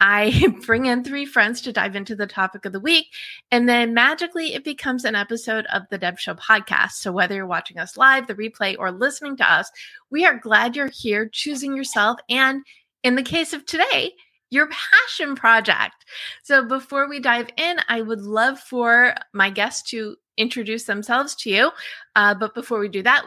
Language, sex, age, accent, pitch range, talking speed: English, female, 30-49, American, 210-275 Hz, 195 wpm